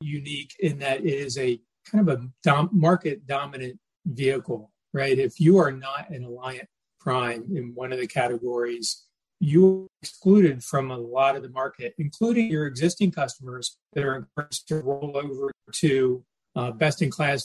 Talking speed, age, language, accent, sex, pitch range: 165 wpm, 40-59, English, American, male, 130-160 Hz